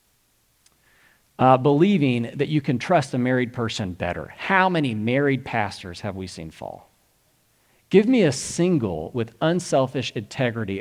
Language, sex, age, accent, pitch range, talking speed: English, male, 40-59, American, 100-140 Hz, 140 wpm